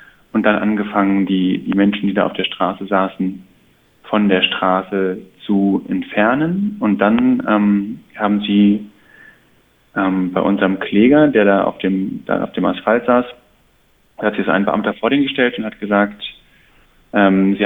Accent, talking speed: German, 165 wpm